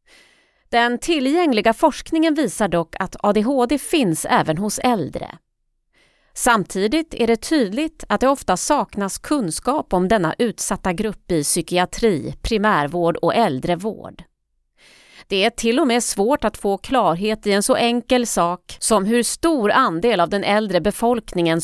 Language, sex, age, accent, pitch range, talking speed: Swedish, female, 30-49, native, 185-260 Hz, 140 wpm